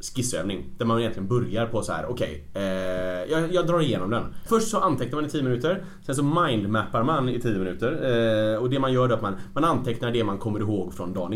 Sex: male